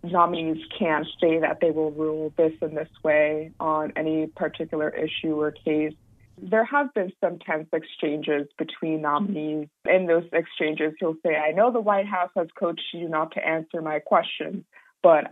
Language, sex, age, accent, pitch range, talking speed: English, female, 20-39, American, 155-185 Hz, 175 wpm